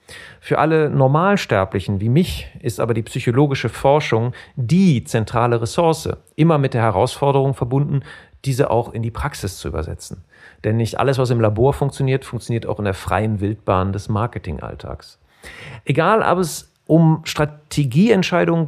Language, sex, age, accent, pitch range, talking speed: German, male, 40-59, German, 105-145 Hz, 145 wpm